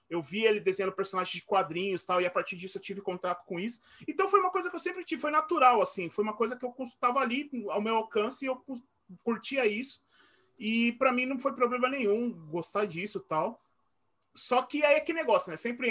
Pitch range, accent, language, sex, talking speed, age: 180-245 Hz, Brazilian, Portuguese, male, 235 wpm, 30-49